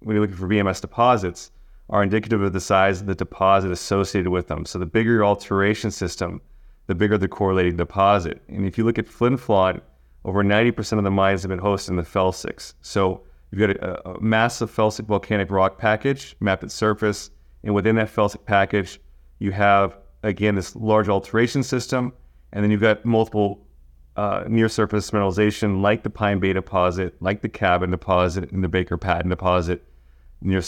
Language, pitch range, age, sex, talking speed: English, 90-110 Hz, 30-49, male, 185 wpm